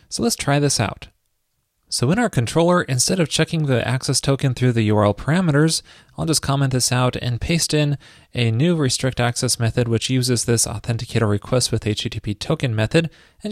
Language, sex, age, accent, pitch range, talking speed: English, male, 30-49, American, 110-145 Hz, 185 wpm